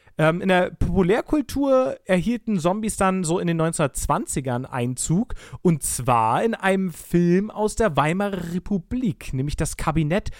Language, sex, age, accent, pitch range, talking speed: German, male, 30-49, German, 160-210 Hz, 135 wpm